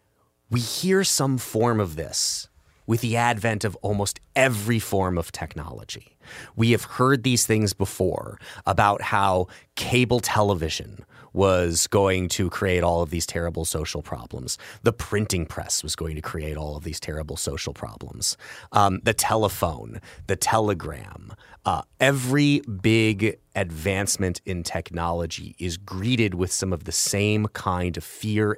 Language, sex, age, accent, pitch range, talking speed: English, male, 30-49, American, 90-115 Hz, 145 wpm